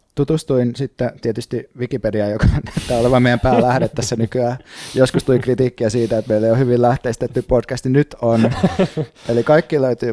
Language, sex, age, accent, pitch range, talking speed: Finnish, male, 30-49, native, 115-145 Hz, 160 wpm